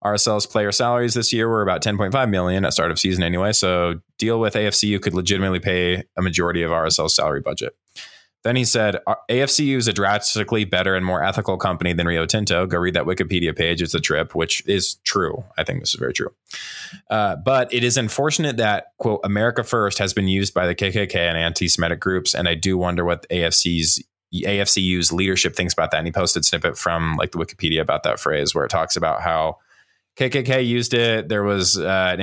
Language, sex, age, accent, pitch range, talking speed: English, male, 20-39, American, 85-105 Hz, 205 wpm